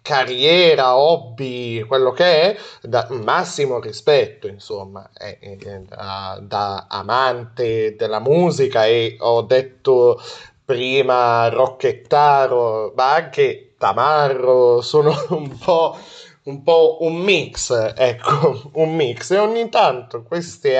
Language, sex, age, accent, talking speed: Italian, male, 30-49, native, 110 wpm